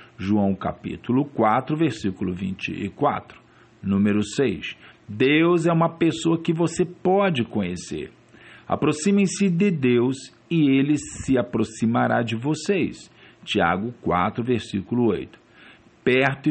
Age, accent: 50-69, Brazilian